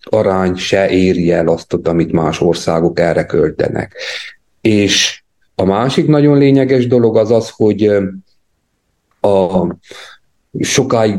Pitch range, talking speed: 90-110 Hz, 115 wpm